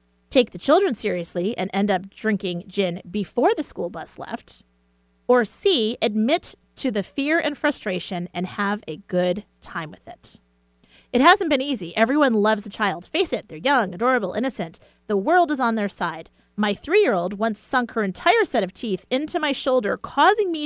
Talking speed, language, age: 185 wpm, English, 30-49